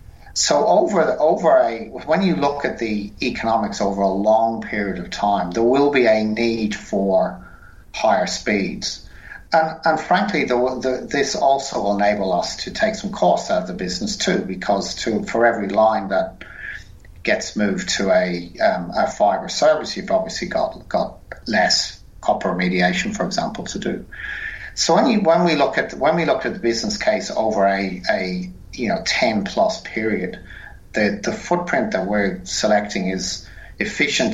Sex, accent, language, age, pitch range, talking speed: male, British, English, 50-69, 95-120 Hz, 170 wpm